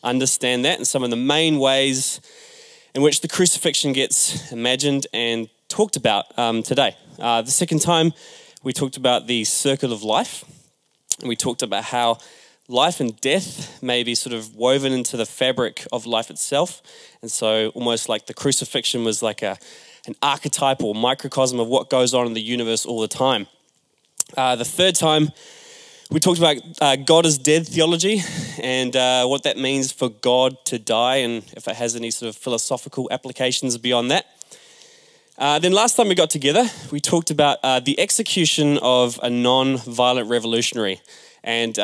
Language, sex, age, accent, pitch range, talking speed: English, male, 20-39, Australian, 120-150 Hz, 170 wpm